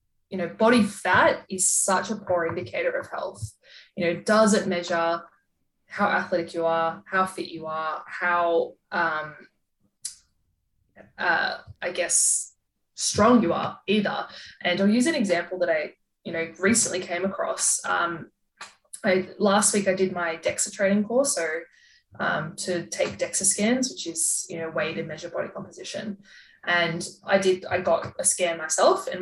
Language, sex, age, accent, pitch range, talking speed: English, female, 20-39, Australian, 170-210 Hz, 165 wpm